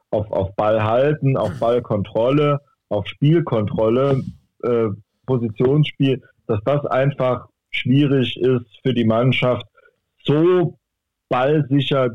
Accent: German